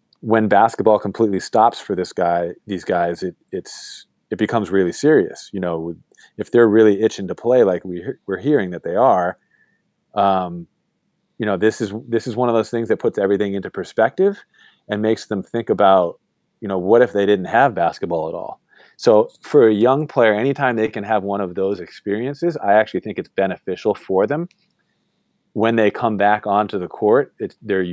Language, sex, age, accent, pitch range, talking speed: English, male, 30-49, American, 95-115 Hz, 195 wpm